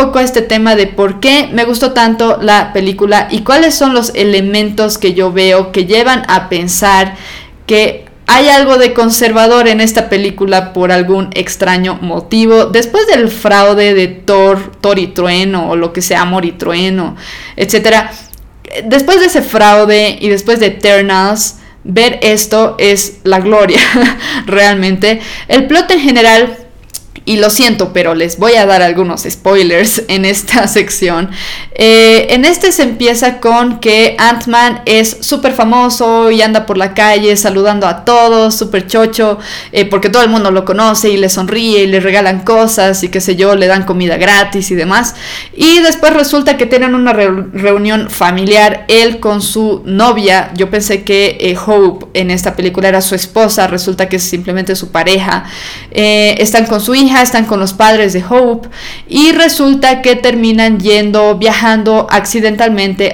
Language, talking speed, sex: Spanish, 165 wpm, female